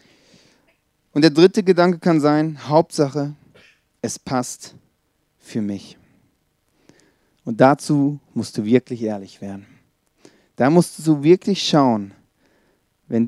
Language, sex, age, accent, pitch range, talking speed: German, male, 40-59, German, 125-150 Hz, 110 wpm